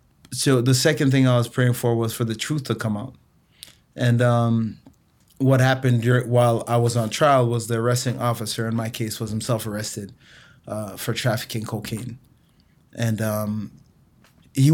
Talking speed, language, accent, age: 165 wpm, English, American, 20-39